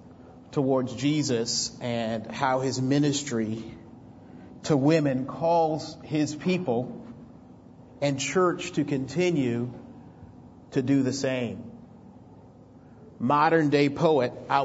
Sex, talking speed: male, 95 wpm